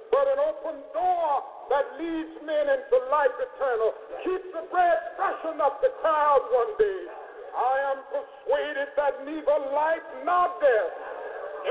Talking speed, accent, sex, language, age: 140 wpm, American, male, English, 50-69